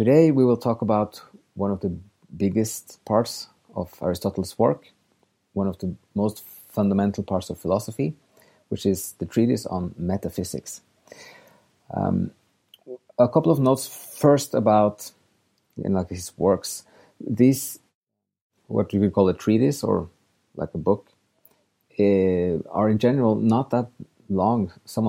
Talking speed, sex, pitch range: 140 wpm, male, 95-115 Hz